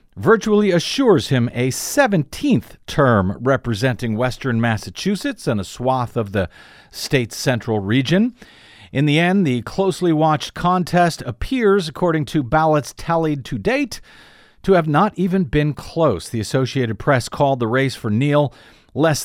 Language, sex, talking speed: English, male, 145 wpm